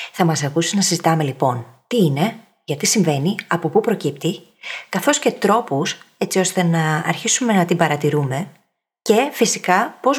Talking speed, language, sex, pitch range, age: 155 wpm, Greek, female, 160-210 Hz, 20-39